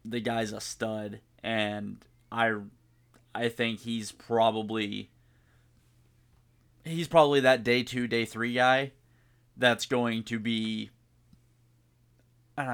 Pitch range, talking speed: 110-125 Hz, 110 wpm